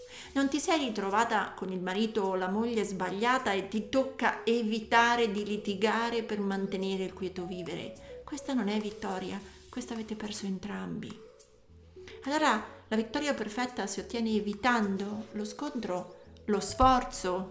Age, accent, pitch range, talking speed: 40-59, native, 205-260 Hz, 140 wpm